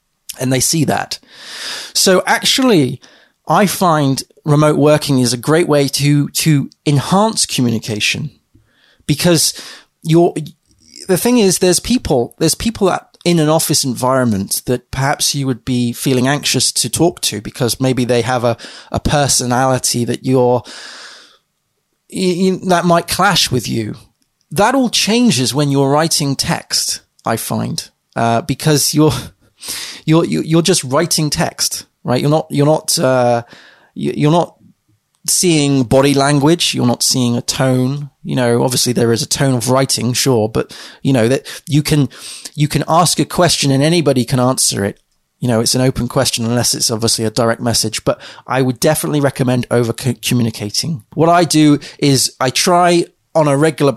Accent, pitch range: British, 125-155 Hz